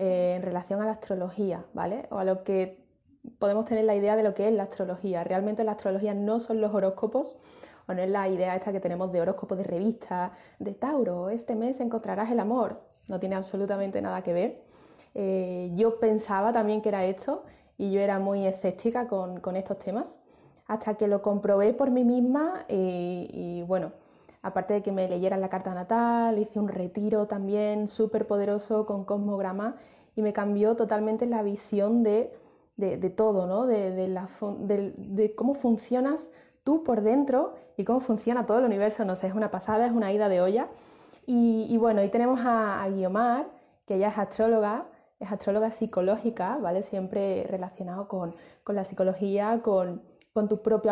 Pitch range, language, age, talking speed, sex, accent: 190-225 Hz, Spanish, 20-39, 185 wpm, female, Spanish